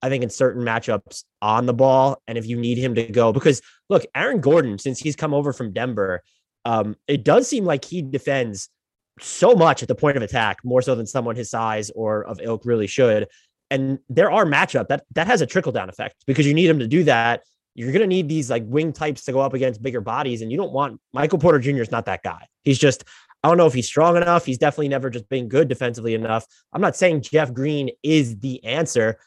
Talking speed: 240 wpm